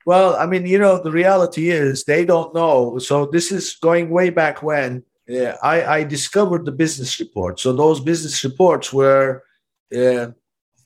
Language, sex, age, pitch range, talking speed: English, male, 50-69, 140-180 Hz, 165 wpm